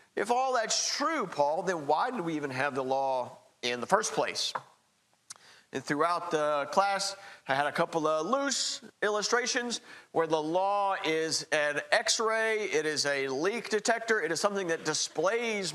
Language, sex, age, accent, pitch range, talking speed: English, male, 50-69, American, 145-195 Hz, 170 wpm